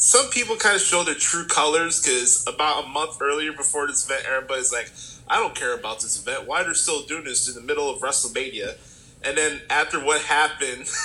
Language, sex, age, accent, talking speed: English, male, 20-39, American, 210 wpm